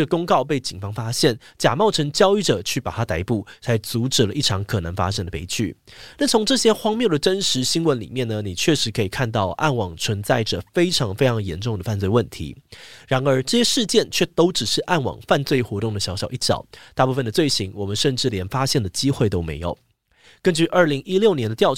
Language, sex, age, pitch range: Chinese, male, 30-49, 105-150 Hz